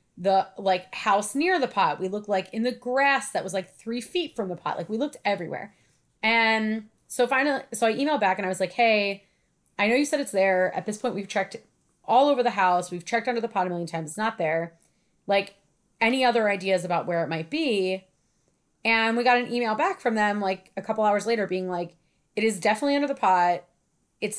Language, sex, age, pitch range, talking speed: English, female, 30-49, 180-235 Hz, 230 wpm